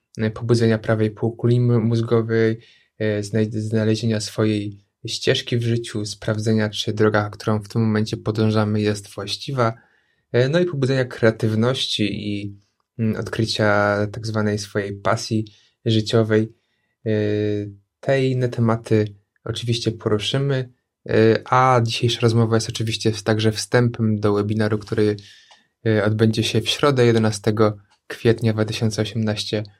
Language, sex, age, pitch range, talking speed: Polish, male, 20-39, 110-120 Hz, 105 wpm